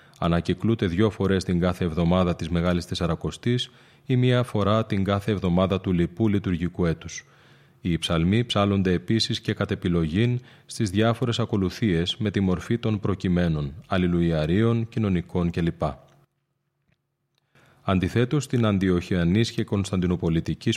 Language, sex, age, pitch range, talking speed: Greek, male, 30-49, 90-115 Hz, 120 wpm